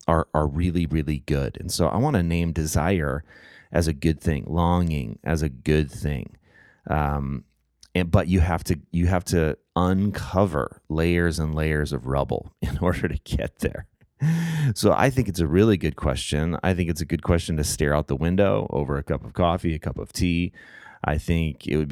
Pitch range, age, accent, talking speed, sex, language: 80-95 Hz, 30-49, American, 200 wpm, male, English